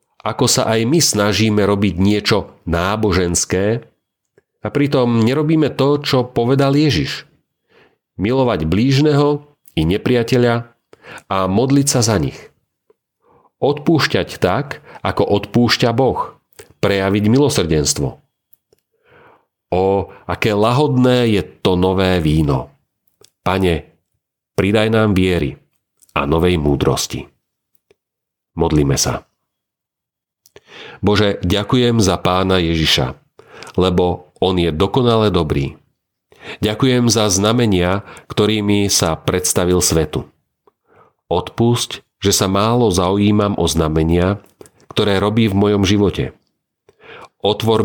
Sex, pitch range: male, 85-115 Hz